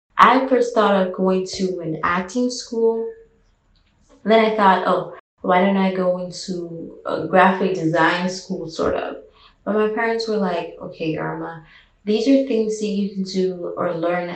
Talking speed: 165 wpm